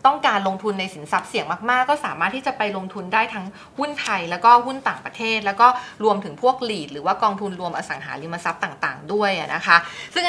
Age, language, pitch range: 20-39, Thai, 190-240 Hz